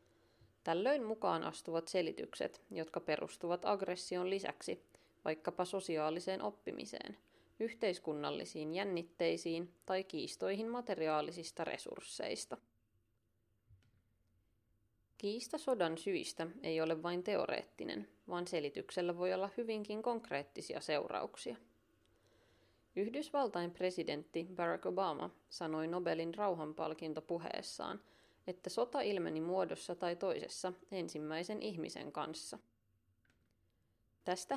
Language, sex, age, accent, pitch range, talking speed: Finnish, female, 30-49, native, 150-190 Hz, 85 wpm